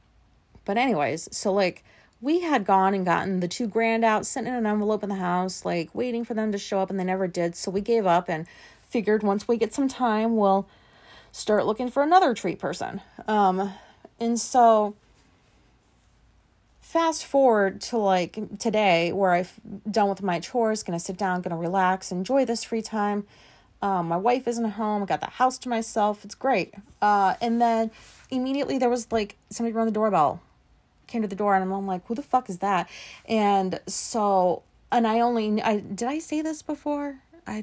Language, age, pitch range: English, 30-49, 190-230 Hz